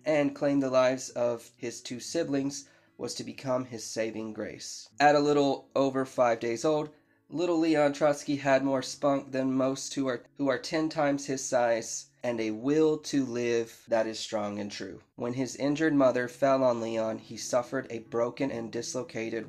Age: 20-39